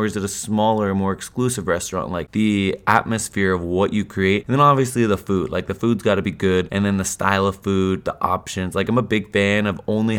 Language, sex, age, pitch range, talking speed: English, male, 20-39, 95-115 Hz, 240 wpm